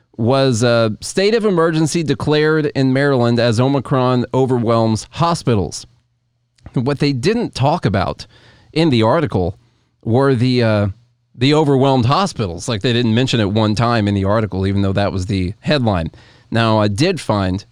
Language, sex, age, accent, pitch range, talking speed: English, male, 30-49, American, 105-130 Hz, 155 wpm